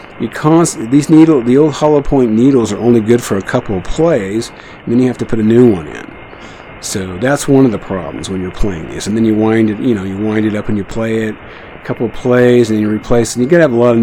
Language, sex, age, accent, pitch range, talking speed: English, male, 50-69, American, 105-135 Hz, 280 wpm